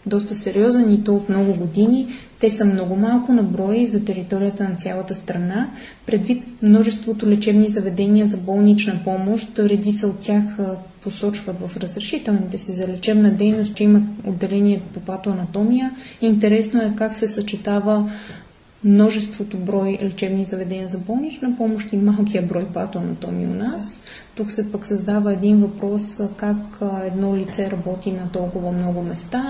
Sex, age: female, 20-39